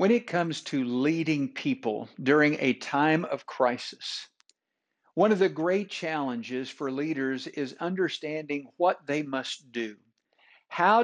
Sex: male